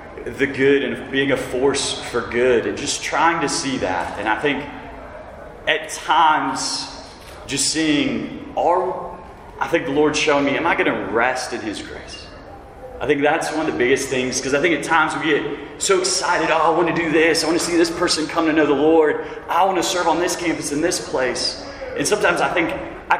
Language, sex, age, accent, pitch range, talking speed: English, male, 30-49, American, 115-150 Hz, 220 wpm